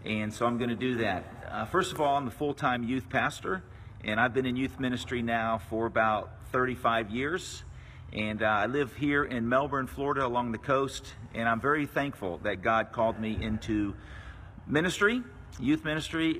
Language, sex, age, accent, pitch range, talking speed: English, male, 50-69, American, 110-145 Hz, 180 wpm